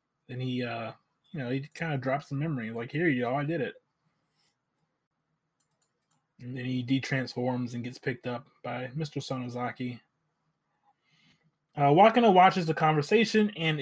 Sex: male